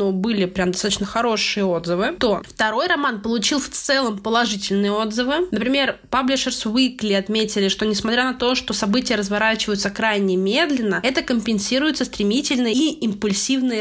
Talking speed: 135 wpm